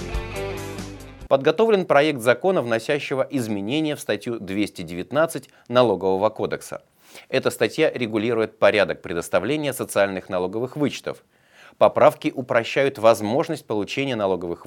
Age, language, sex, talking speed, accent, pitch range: 30-49, Russian, male, 95 wpm, native, 100-140 Hz